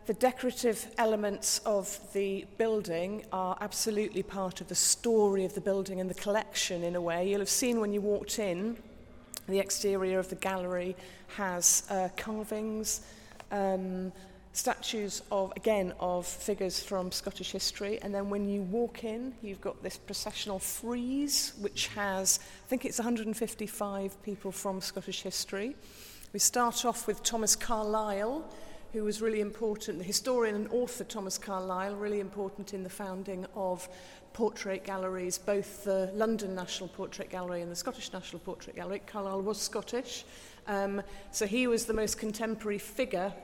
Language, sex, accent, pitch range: English, female, British, 190-220 Hz